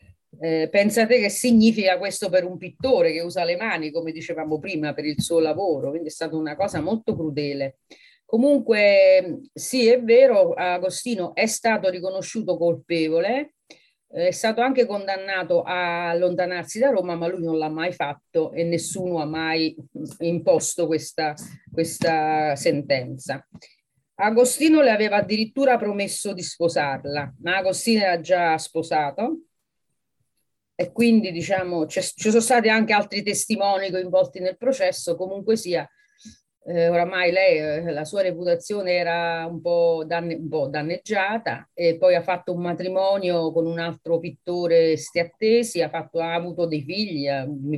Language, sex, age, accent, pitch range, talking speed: English, female, 40-59, Italian, 165-205 Hz, 140 wpm